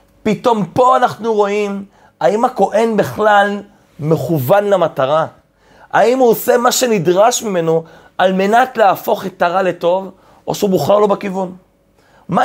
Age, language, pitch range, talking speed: 30-49, Hebrew, 180-225 Hz, 125 wpm